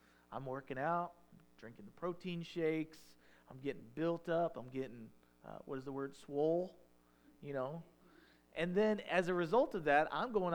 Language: English